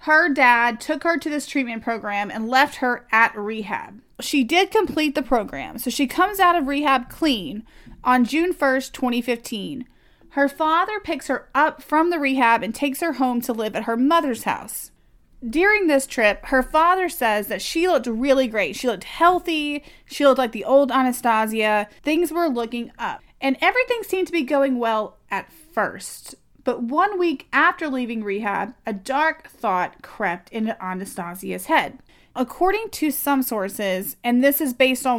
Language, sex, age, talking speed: English, female, 30-49, 175 wpm